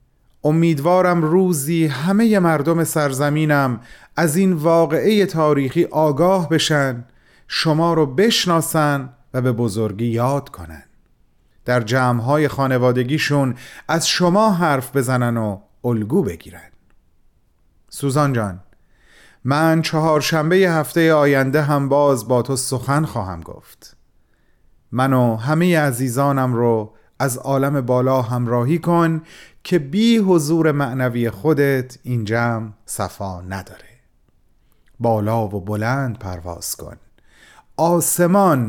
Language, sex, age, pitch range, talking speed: Persian, male, 30-49, 105-155 Hz, 105 wpm